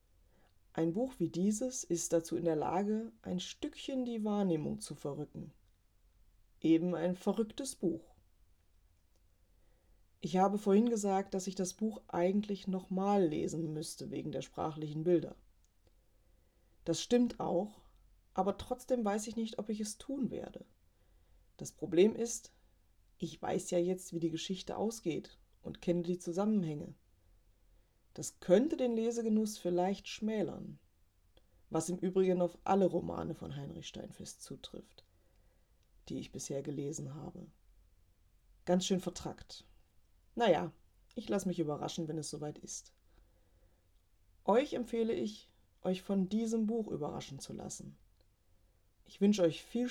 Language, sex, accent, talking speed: German, female, German, 130 wpm